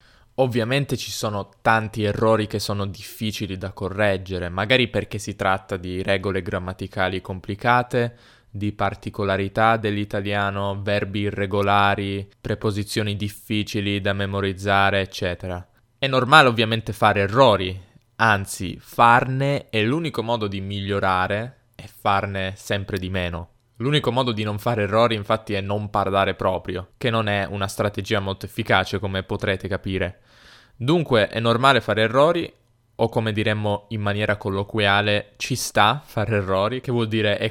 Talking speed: 135 wpm